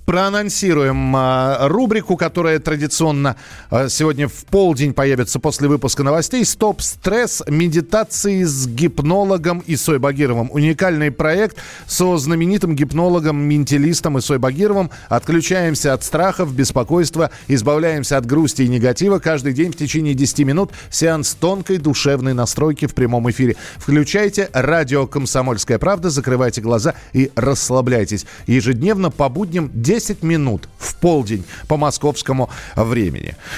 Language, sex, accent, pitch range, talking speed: Russian, male, native, 135-175 Hz, 120 wpm